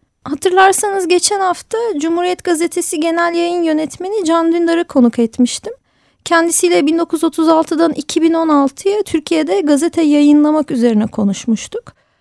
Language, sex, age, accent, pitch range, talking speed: Turkish, female, 30-49, native, 285-345 Hz, 100 wpm